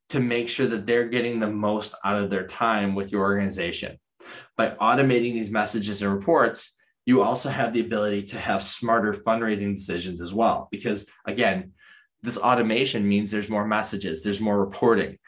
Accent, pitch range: American, 100-120 Hz